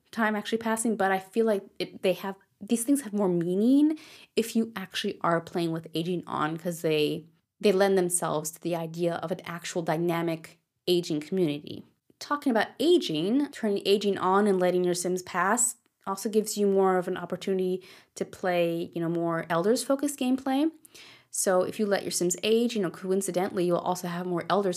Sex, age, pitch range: female, 20-39, 175-220 Hz